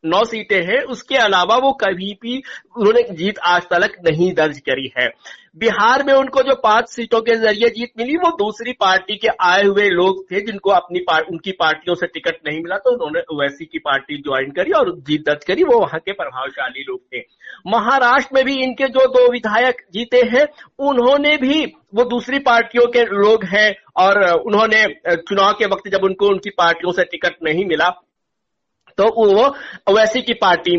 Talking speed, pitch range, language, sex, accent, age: 185 wpm, 185-250 Hz, Hindi, male, native, 60-79